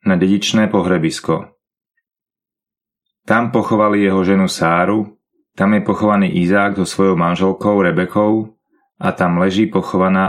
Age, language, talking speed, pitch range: 30-49, Slovak, 115 wpm, 95-110 Hz